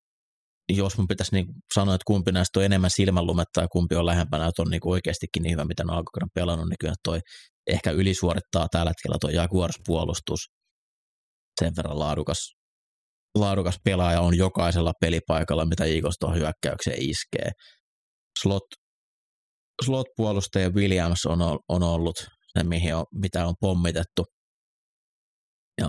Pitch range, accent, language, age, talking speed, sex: 80-95 Hz, native, Finnish, 30-49, 135 wpm, male